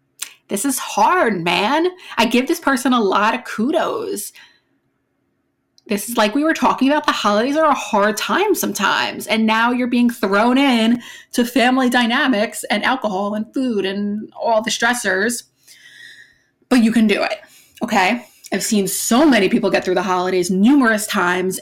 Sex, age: female, 20-39